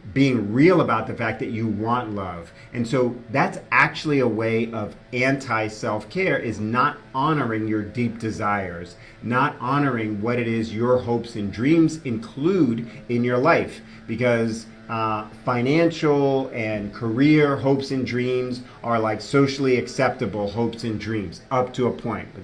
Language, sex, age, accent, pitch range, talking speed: English, male, 40-59, American, 110-130 Hz, 150 wpm